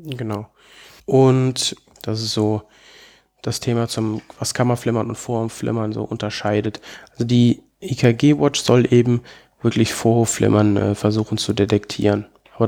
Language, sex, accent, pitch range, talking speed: German, male, German, 110-130 Hz, 135 wpm